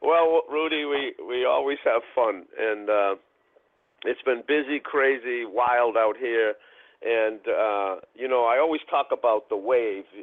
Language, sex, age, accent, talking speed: English, male, 50-69, American, 155 wpm